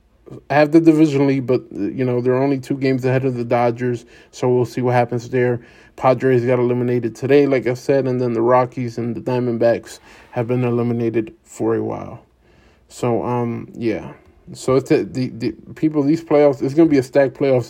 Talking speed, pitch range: 200 wpm, 120-130 Hz